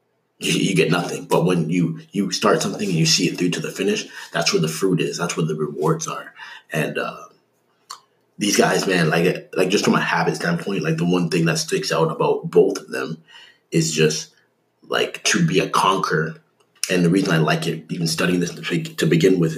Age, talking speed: 30-49, 215 wpm